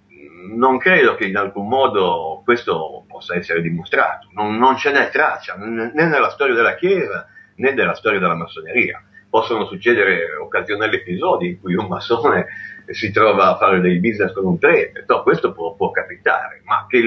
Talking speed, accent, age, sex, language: 170 wpm, native, 50-69, male, Italian